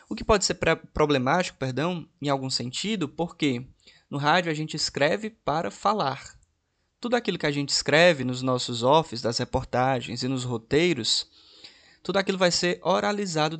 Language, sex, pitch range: Portuguese, male, 140-195 Hz